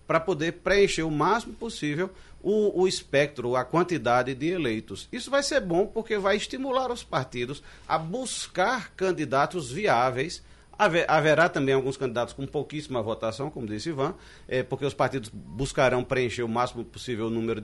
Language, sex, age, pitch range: Portuguese, male, 40-59, 125-185 Hz